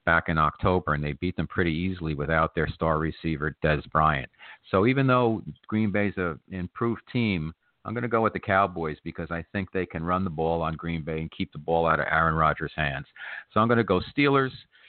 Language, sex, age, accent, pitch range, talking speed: English, male, 50-69, American, 80-100 Hz, 225 wpm